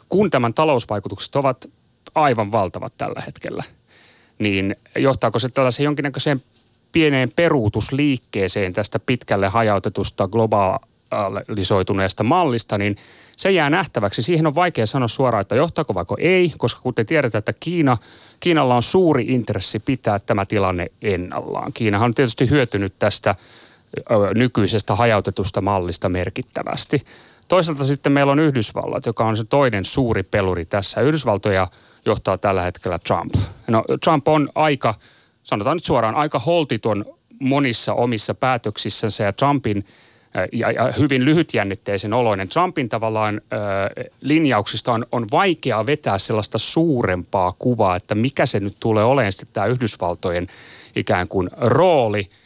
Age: 30-49